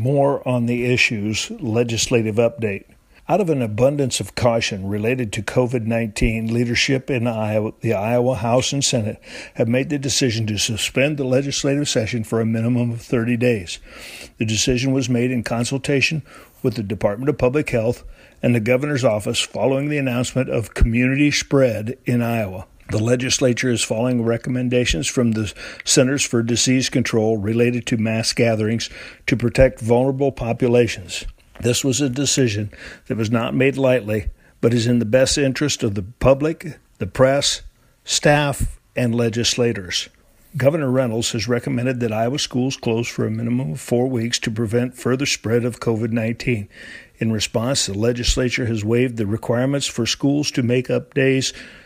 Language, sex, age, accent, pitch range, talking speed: English, male, 60-79, American, 115-130 Hz, 160 wpm